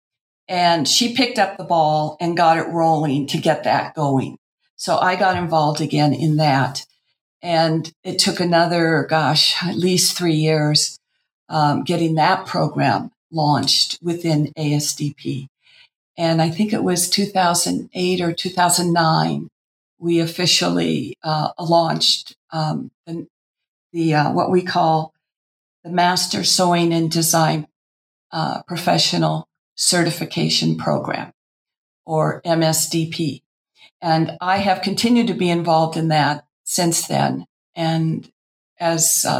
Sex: female